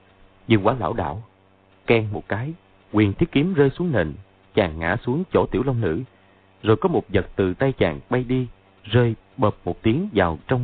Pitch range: 95-115 Hz